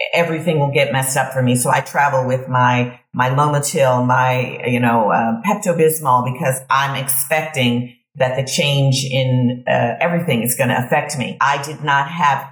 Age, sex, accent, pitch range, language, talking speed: 40-59, female, American, 135-175 Hz, English, 175 wpm